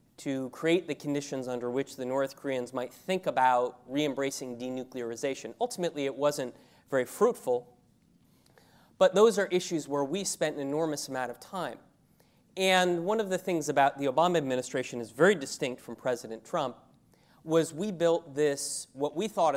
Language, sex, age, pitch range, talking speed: English, male, 30-49, 125-150 Hz, 165 wpm